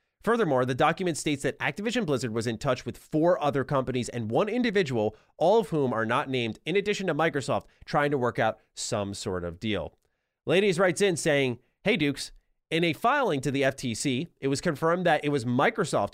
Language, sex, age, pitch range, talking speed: English, male, 30-49, 115-165 Hz, 200 wpm